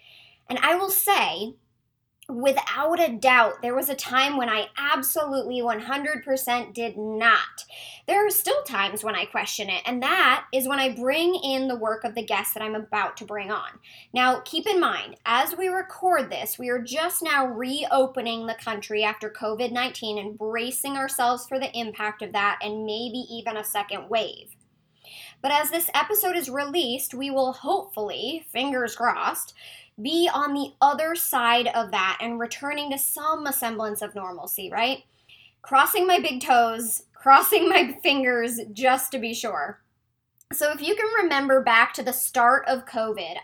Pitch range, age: 230-290 Hz, 20-39